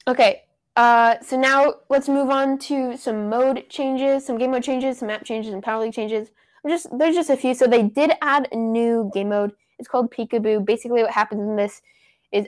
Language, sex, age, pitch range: English, female, 10-29, 215-270 Hz